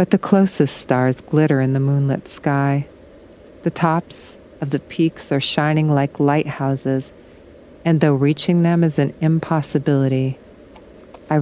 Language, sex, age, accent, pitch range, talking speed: English, female, 40-59, American, 145-170 Hz, 135 wpm